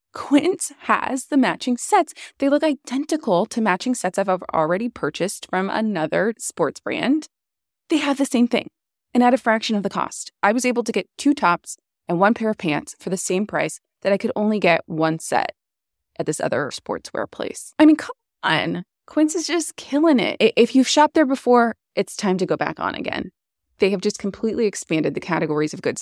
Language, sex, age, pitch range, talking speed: English, female, 20-39, 185-280 Hz, 205 wpm